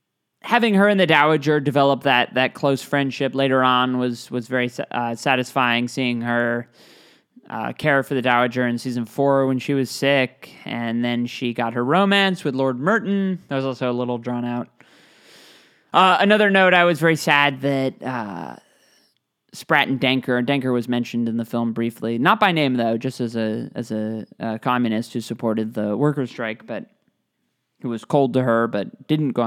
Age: 20-39